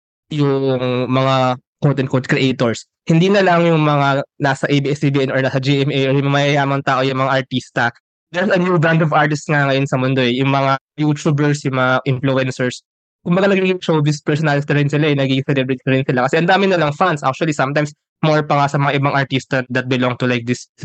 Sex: male